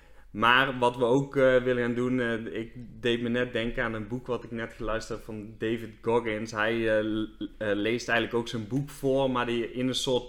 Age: 20-39